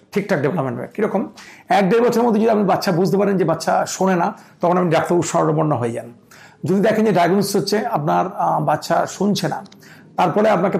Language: Bengali